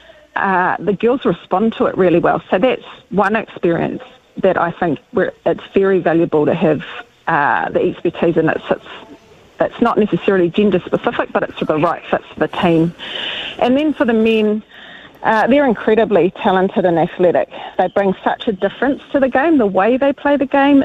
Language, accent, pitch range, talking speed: English, Australian, 185-235 Hz, 180 wpm